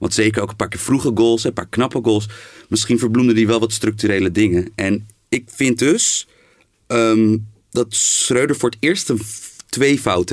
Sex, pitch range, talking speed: male, 105-120 Hz, 190 wpm